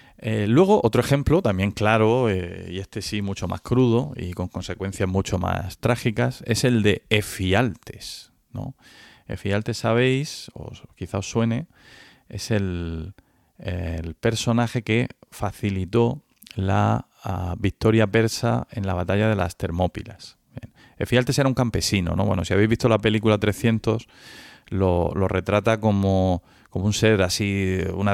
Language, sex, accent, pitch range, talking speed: Spanish, male, Spanish, 95-115 Hz, 140 wpm